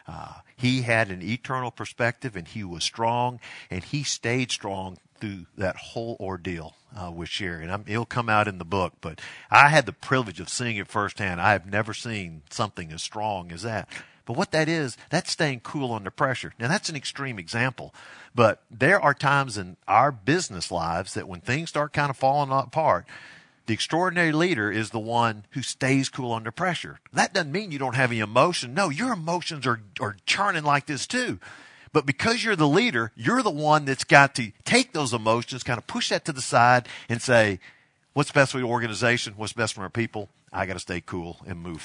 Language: English